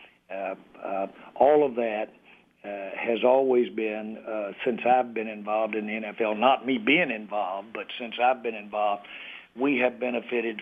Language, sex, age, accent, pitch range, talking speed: English, male, 60-79, American, 110-120 Hz, 165 wpm